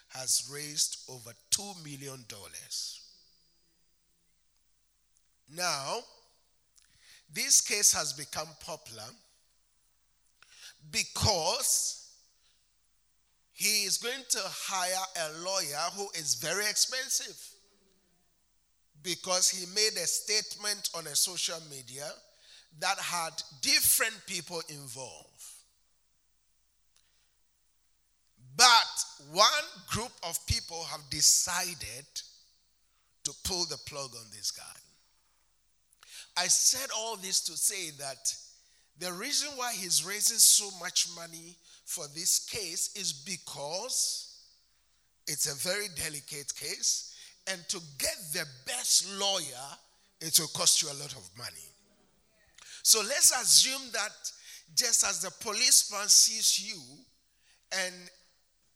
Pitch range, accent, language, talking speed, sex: 150-205 Hz, Nigerian, English, 105 wpm, male